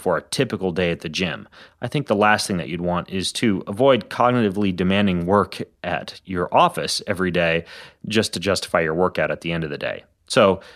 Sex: male